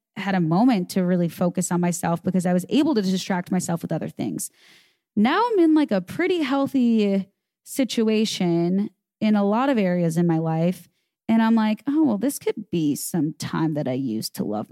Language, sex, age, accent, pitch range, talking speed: English, female, 20-39, American, 180-240 Hz, 200 wpm